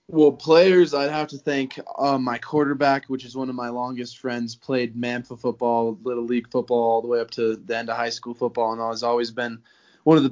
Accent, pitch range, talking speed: American, 115-135 Hz, 240 wpm